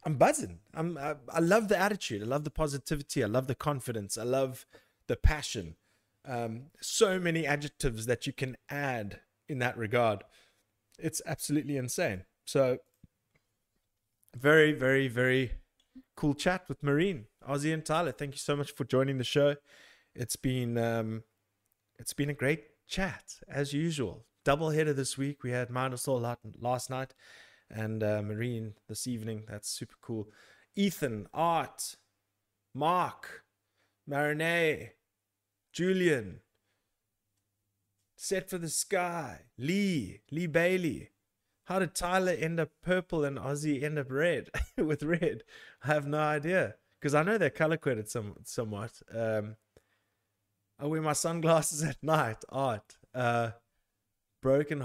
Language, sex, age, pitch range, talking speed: English, male, 20-39, 110-150 Hz, 140 wpm